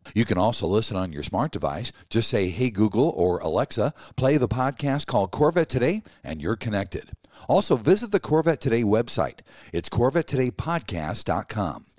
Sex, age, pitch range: male, 50-69, 105-135 Hz